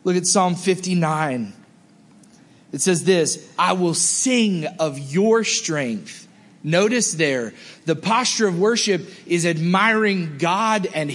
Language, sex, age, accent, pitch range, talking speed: English, male, 30-49, American, 155-210 Hz, 125 wpm